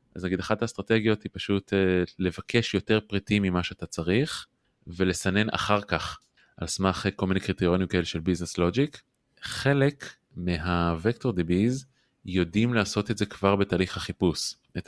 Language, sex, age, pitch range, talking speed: Hebrew, male, 20-39, 85-100 Hz, 140 wpm